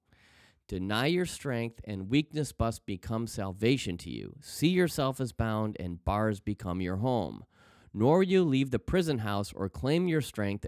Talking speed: 165 wpm